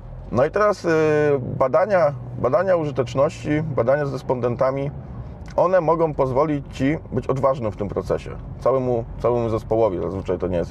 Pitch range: 115-145 Hz